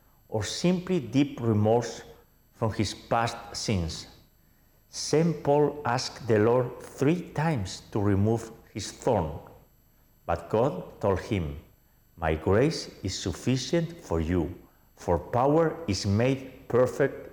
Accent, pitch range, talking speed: Spanish, 90-125 Hz, 120 wpm